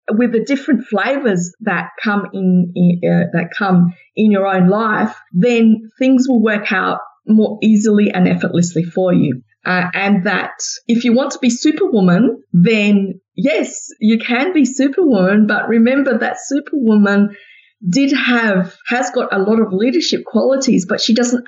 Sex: female